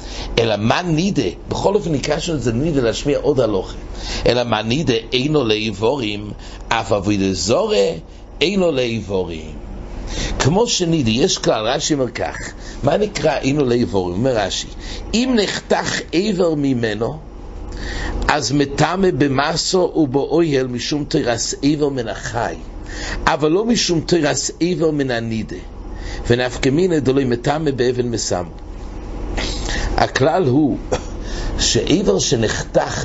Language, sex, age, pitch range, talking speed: English, male, 60-79, 115-165 Hz, 95 wpm